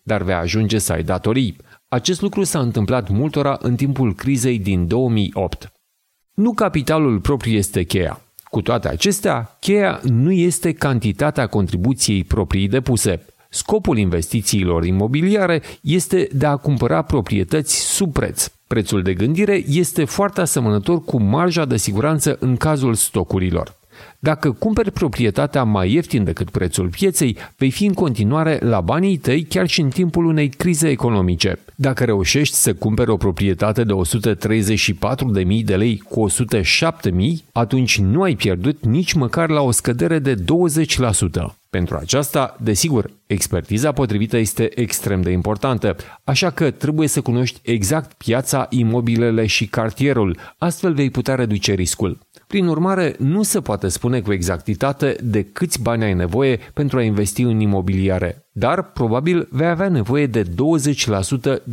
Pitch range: 105-150 Hz